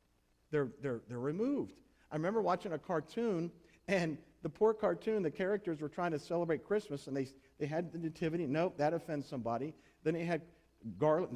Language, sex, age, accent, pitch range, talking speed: English, male, 50-69, American, 140-190 Hz, 180 wpm